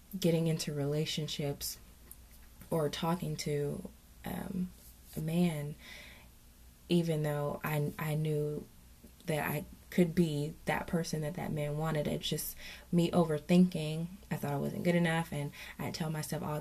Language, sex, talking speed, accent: English, female, 140 wpm, American